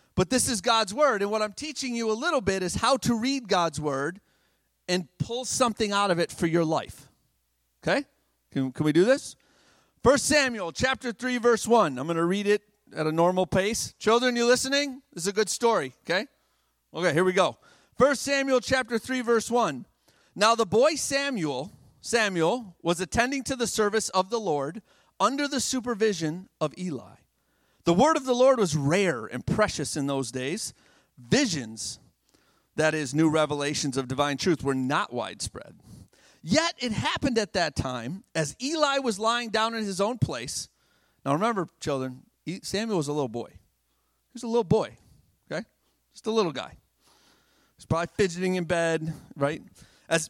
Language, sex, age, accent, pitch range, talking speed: English, male, 40-59, American, 160-240 Hz, 180 wpm